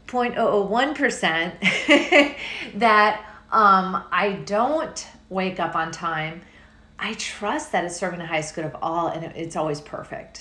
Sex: female